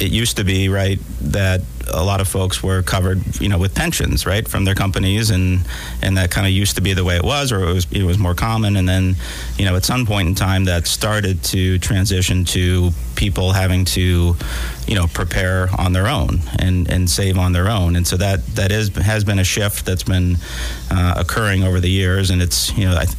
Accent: American